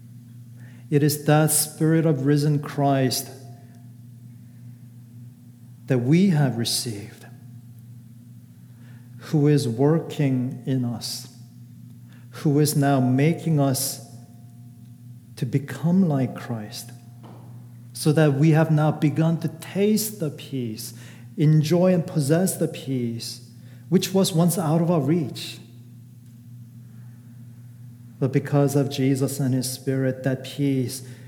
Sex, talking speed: male, 105 wpm